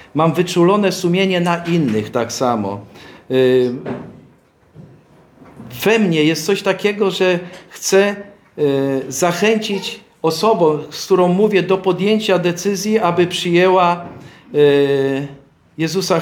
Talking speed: 95 wpm